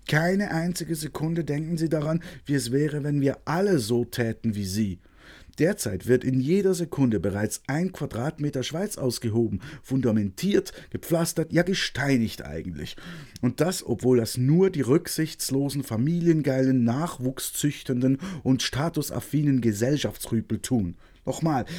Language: German